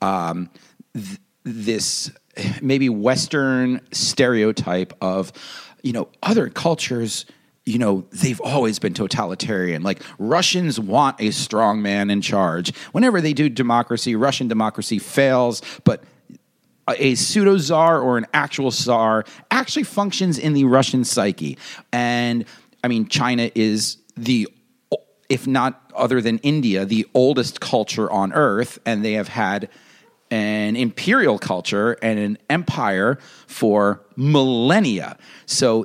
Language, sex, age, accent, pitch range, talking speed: English, male, 40-59, American, 110-140 Hz, 125 wpm